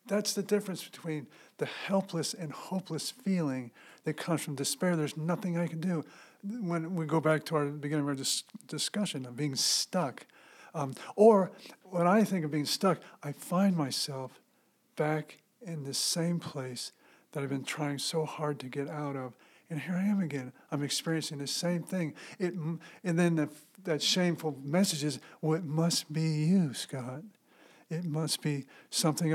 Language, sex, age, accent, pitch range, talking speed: English, male, 50-69, American, 145-180 Hz, 175 wpm